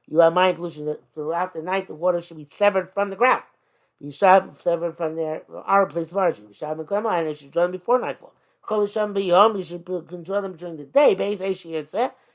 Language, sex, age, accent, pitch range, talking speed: English, male, 50-69, American, 155-195 Hz, 240 wpm